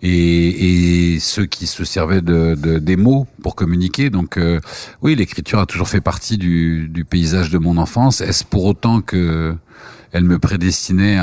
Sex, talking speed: male, 175 wpm